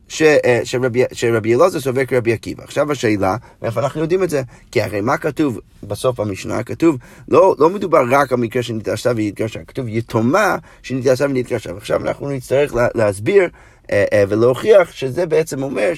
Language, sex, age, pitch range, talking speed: Hebrew, male, 30-49, 115-145 Hz, 165 wpm